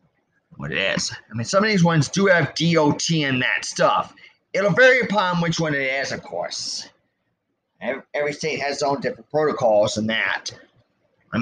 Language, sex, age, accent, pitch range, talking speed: English, male, 30-49, American, 130-170 Hz, 180 wpm